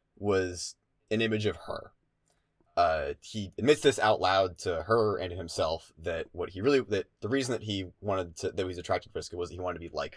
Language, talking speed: English, 225 wpm